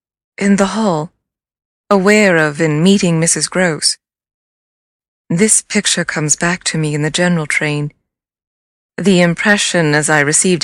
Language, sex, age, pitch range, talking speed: English, female, 20-39, 160-195 Hz, 135 wpm